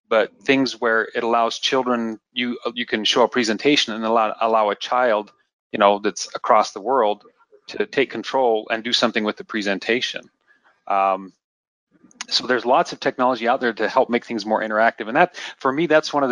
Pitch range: 110-130 Hz